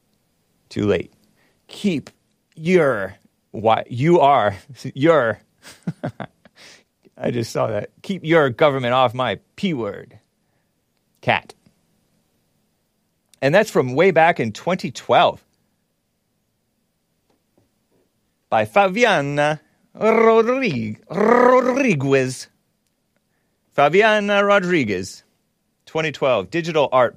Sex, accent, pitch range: male, American, 115-185 Hz